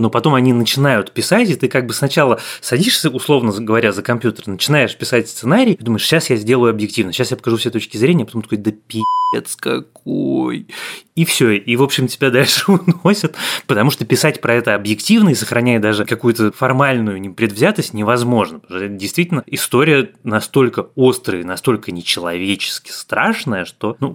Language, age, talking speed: Russian, 20-39, 170 wpm